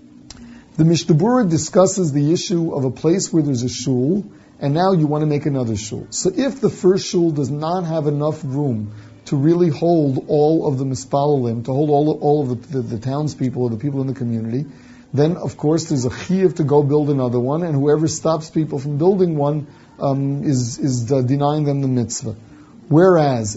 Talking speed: 200 wpm